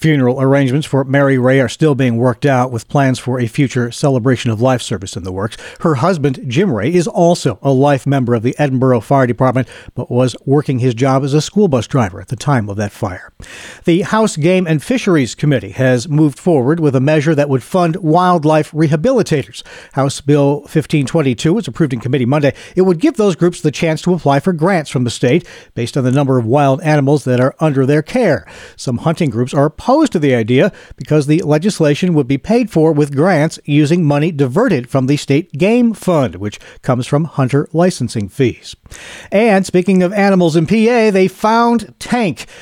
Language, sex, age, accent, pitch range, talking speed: English, male, 50-69, American, 130-175 Hz, 200 wpm